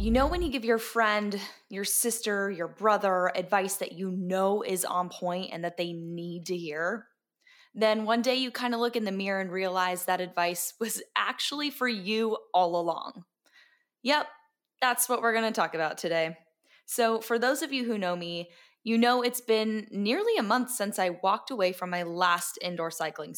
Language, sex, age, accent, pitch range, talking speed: English, female, 10-29, American, 175-225 Hz, 200 wpm